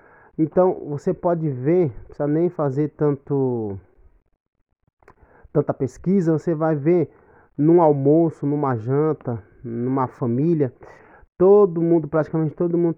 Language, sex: Portuguese, male